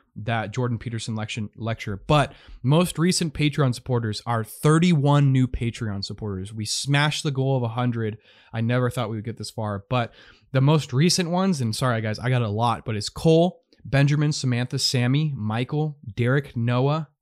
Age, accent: 20-39, American